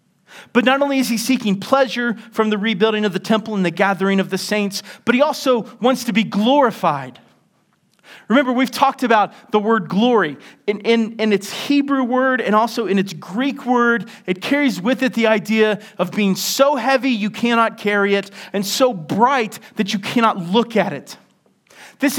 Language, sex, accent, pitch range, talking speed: English, male, American, 200-255 Hz, 185 wpm